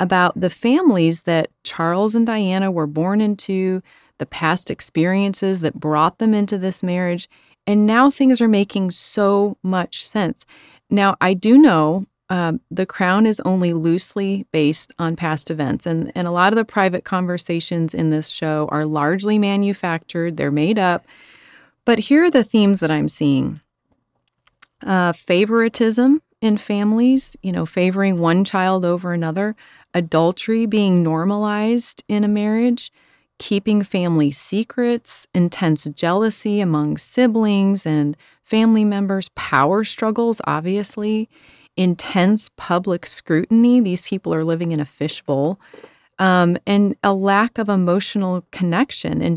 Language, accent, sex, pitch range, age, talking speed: English, American, female, 170-210 Hz, 30-49, 140 wpm